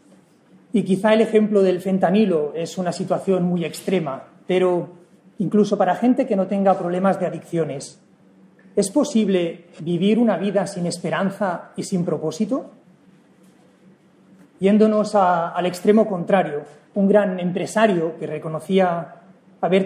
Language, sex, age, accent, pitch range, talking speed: English, male, 40-59, Spanish, 175-210 Hz, 125 wpm